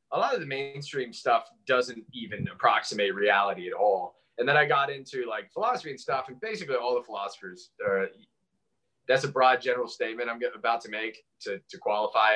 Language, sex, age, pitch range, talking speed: English, male, 20-39, 115-185 Hz, 190 wpm